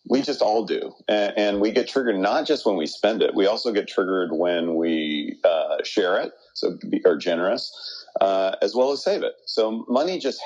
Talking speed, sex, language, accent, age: 210 wpm, male, English, American, 40-59